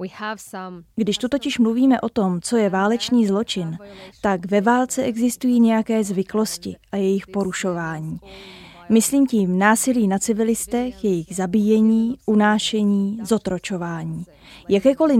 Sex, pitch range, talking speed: female, 195-230 Hz, 115 wpm